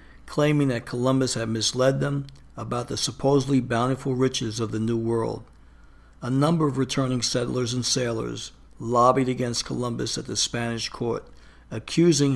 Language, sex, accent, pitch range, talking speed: English, male, American, 115-135 Hz, 145 wpm